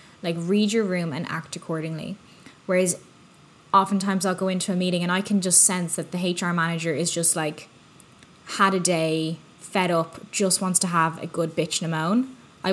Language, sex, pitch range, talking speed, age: English, female, 165-195 Hz, 200 wpm, 10-29